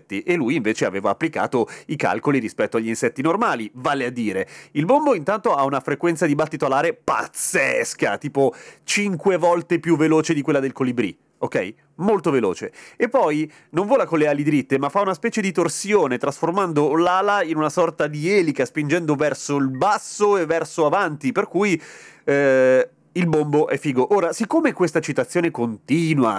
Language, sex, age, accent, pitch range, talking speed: Italian, male, 30-49, native, 125-175 Hz, 175 wpm